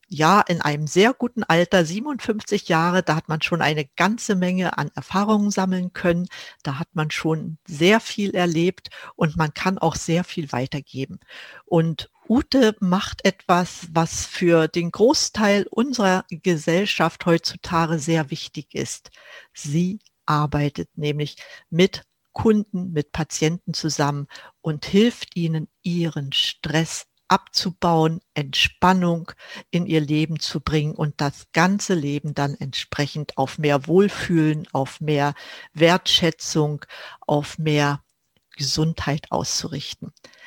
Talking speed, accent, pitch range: 125 wpm, German, 155-195 Hz